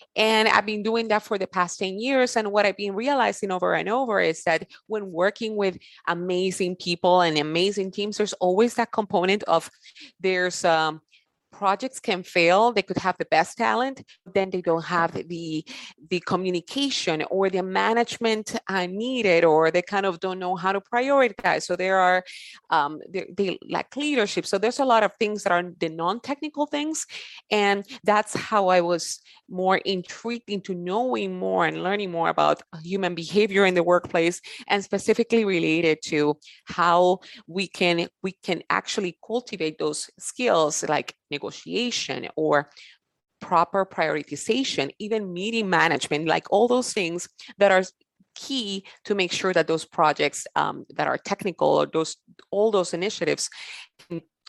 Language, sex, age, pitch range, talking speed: English, female, 30-49, 175-220 Hz, 160 wpm